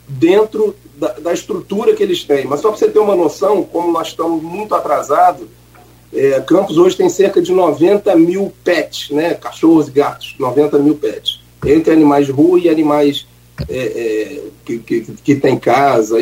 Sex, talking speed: male, 165 wpm